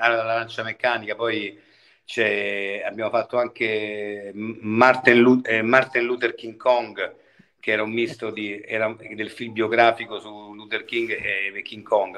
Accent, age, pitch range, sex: native, 50-69, 105-125 Hz, male